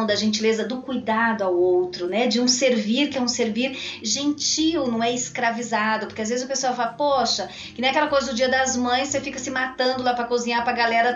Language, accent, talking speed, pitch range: Portuguese, Brazilian, 225 wpm, 240-305 Hz